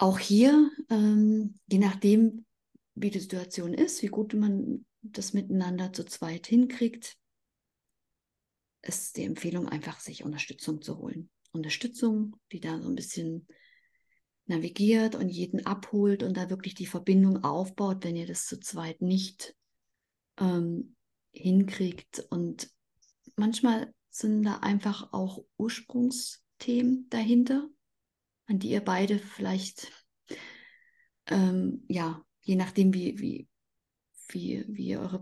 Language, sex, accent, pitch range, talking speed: German, female, German, 185-225 Hz, 125 wpm